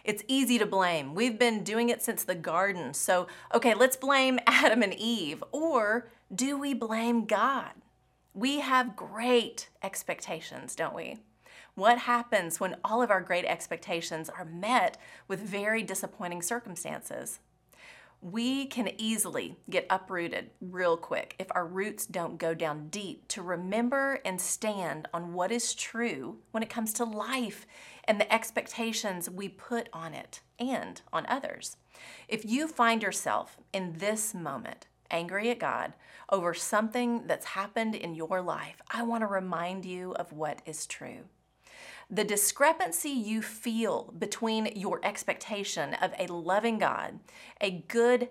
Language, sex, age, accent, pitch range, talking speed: English, female, 30-49, American, 185-235 Hz, 150 wpm